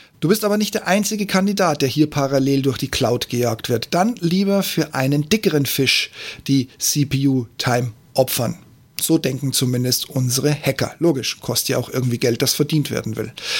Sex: male